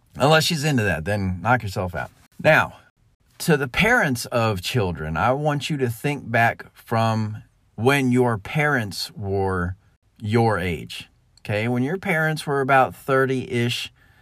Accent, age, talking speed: American, 40-59, 145 wpm